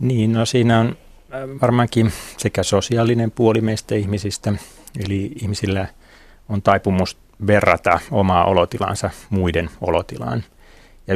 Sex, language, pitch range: male, Finnish, 95-110 Hz